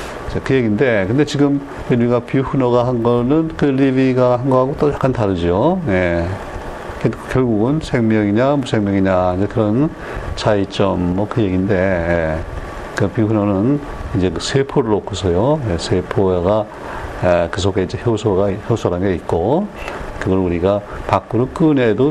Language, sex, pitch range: Korean, male, 95-125 Hz